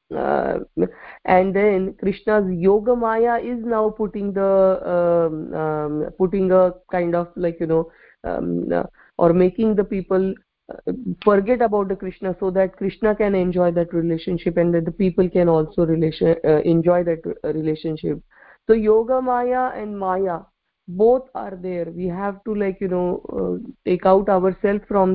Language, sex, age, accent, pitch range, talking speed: English, female, 30-49, Indian, 175-210 Hz, 155 wpm